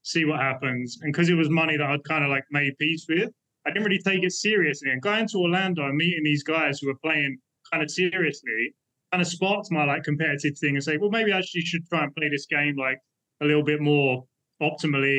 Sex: male